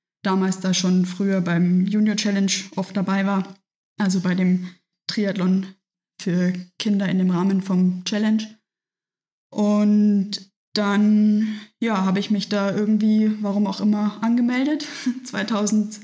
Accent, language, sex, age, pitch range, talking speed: German, German, female, 20-39, 185-210 Hz, 125 wpm